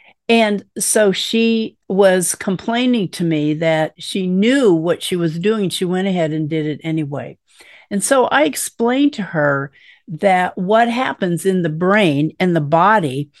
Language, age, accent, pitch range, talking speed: English, 50-69, American, 165-215 Hz, 160 wpm